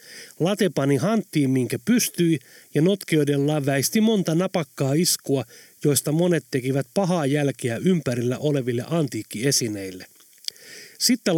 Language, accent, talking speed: Finnish, native, 110 wpm